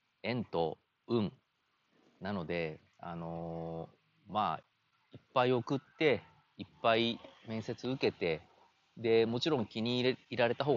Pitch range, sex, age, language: 85-120 Hz, male, 30-49, Japanese